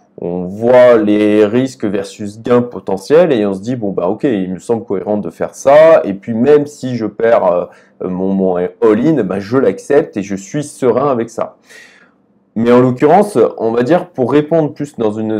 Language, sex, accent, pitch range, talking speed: French, male, French, 105-150 Hz, 200 wpm